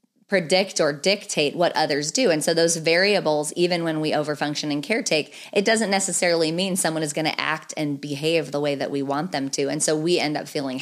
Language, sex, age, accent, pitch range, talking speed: English, female, 30-49, American, 150-185 Hz, 220 wpm